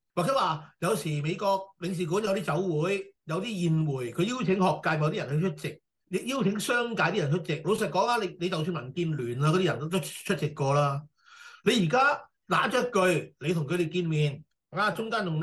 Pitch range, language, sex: 155-190 Hz, Chinese, male